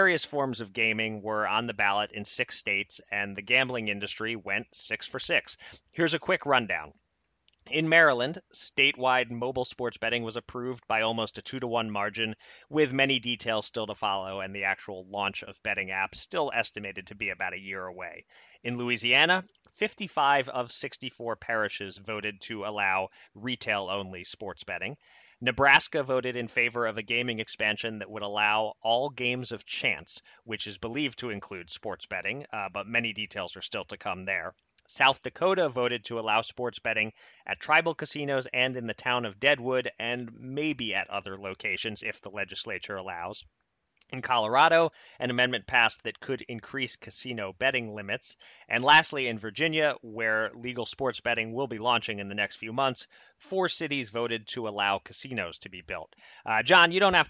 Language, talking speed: English, 175 wpm